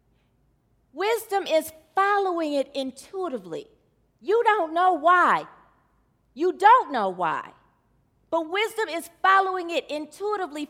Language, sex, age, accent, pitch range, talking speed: English, female, 40-59, American, 285-375 Hz, 105 wpm